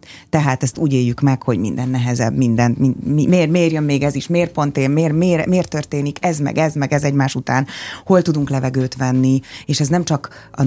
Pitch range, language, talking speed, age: 120-150 Hz, Hungarian, 225 wpm, 30-49